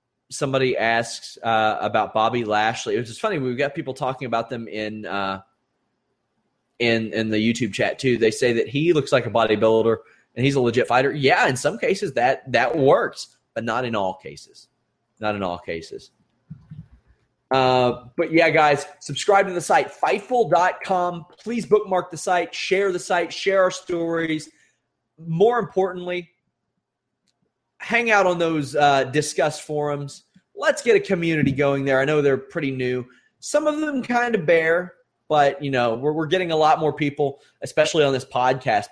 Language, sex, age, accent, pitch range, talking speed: English, male, 30-49, American, 125-170 Hz, 170 wpm